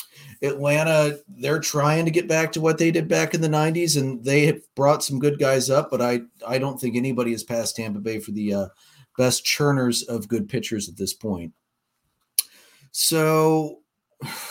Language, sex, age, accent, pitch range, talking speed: English, male, 40-59, American, 120-145 Hz, 180 wpm